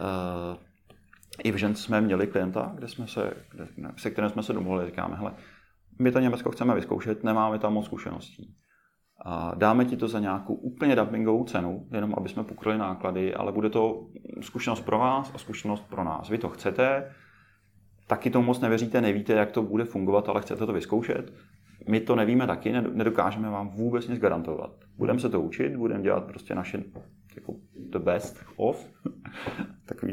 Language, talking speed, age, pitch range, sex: Czech, 170 wpm, 30-49, 95-110 Hz, male